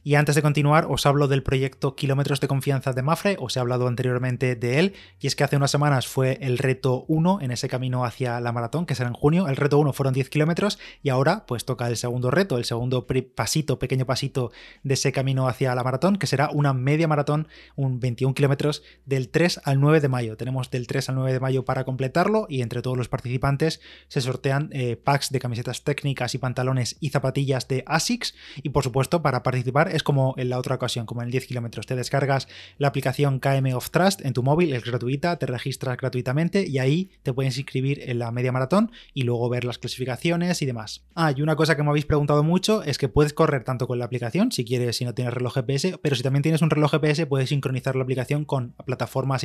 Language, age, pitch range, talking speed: Spanish, 20-39, 125-150 Hz, 230 wpm